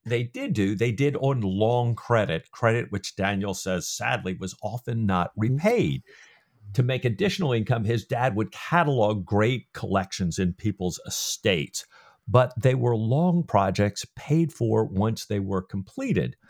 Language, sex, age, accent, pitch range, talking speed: English, male, 50-69, American, 95-125 Hz, 150 wpm